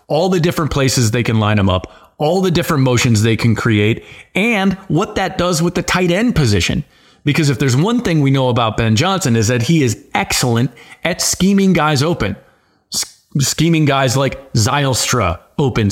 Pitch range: 115-150 Hz